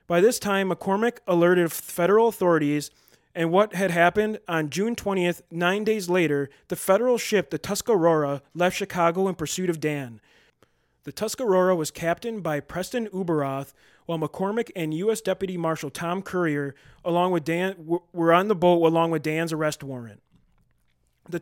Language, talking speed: English, 155 wpm